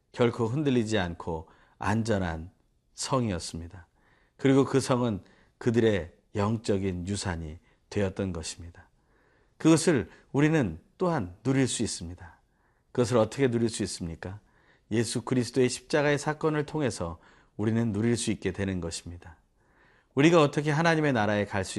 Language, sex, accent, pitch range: Korean, male, native, 90-135 Hz